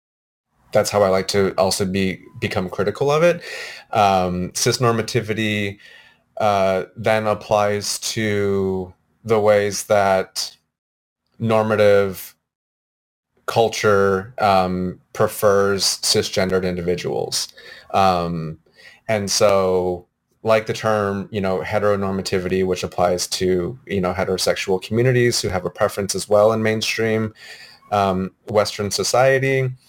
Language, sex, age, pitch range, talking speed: English, male, 30-49, 95-110 Hz, 105 wpm